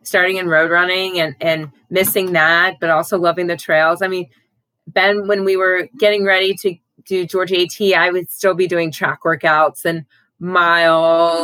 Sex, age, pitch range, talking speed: female, 20-39, 170-205 Hz, 180 wpm